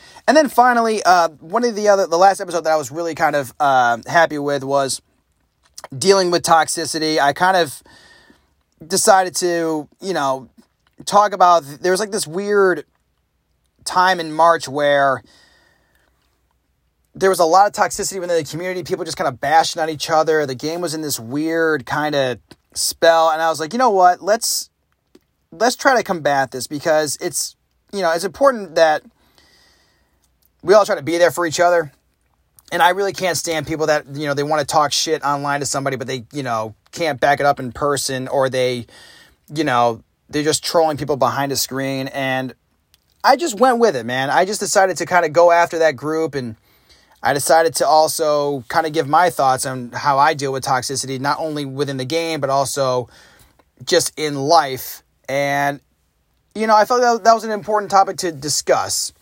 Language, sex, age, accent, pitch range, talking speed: English, male, 30-49, American, 135-175 Hz, 195 wpm